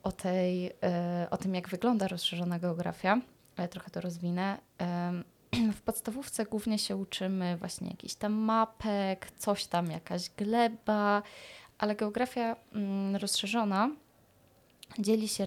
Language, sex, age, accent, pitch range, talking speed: Polish, female, 20-39, native, 175-210 Hz, 120 wpm